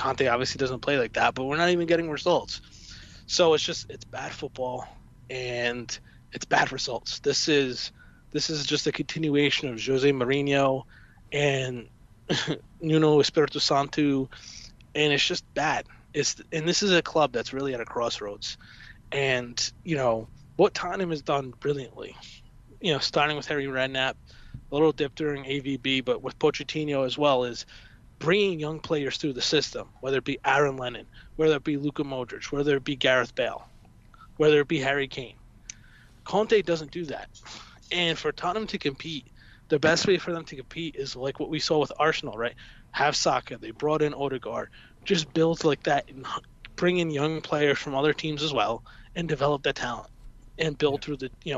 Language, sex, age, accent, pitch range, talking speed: English, male, 20-39, American, 130-155 Hz, 185 wpm